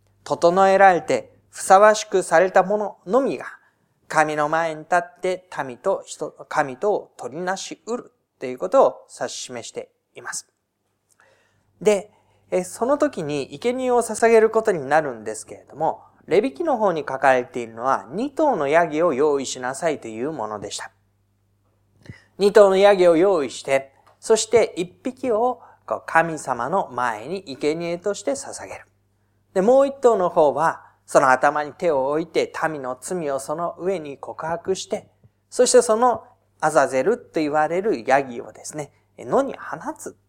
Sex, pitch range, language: male, 125-210 Hz, Japanese